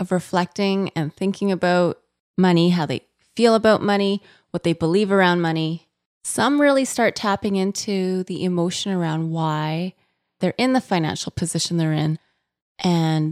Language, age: English, 20-39